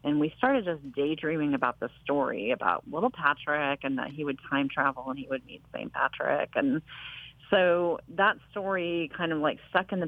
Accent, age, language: American, 40-59, English